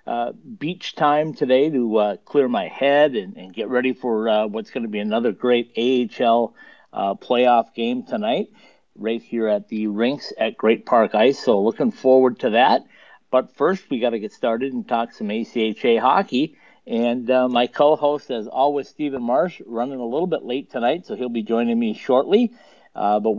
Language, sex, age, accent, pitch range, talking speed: English, male, 50-69, American, 115-145 Hz, 190 wpm